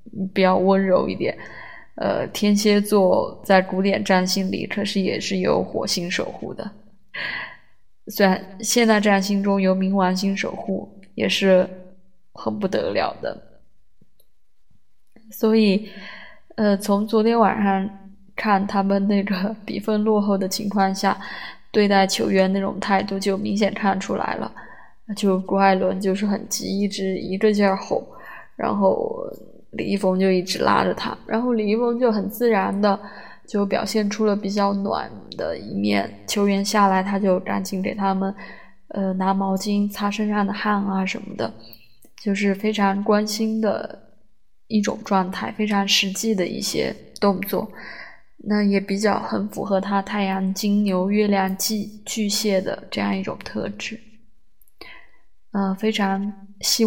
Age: 20-39